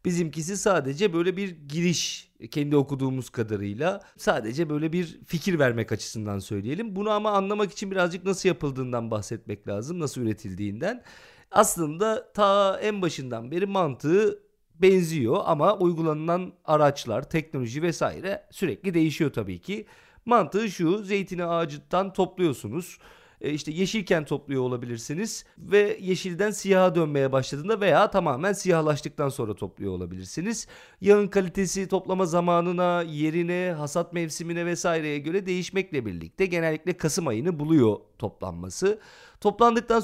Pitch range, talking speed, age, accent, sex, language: 140-195 Hz, 120 wpm, 40-59, native, male, Turkish